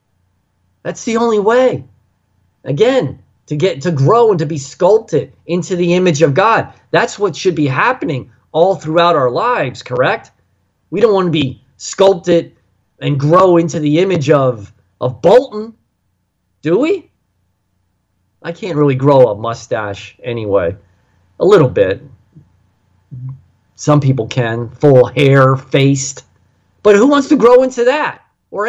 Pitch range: 125-185 Hz